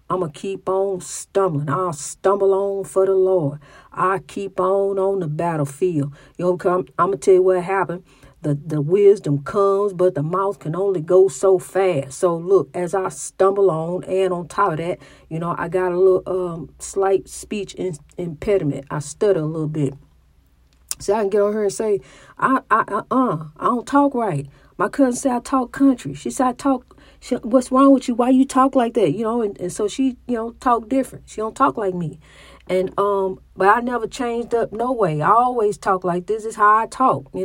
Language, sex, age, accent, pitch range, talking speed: English, female, 50-69, American, 180-225 Hz, 220 wpm